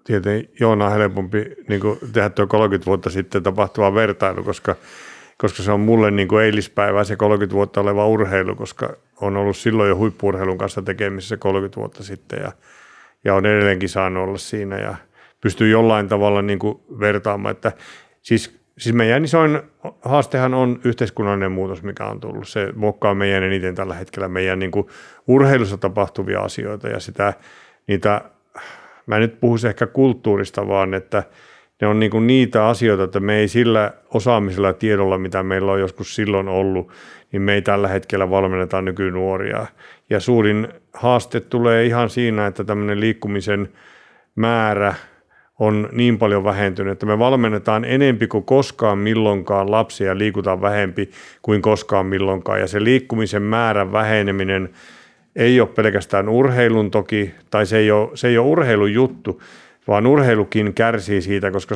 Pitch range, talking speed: 100-115 Hz, 155 wpm